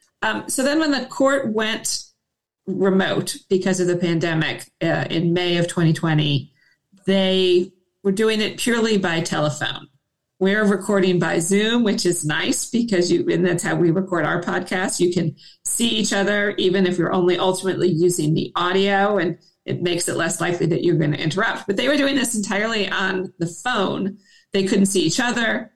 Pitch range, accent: 175-205 Hz, American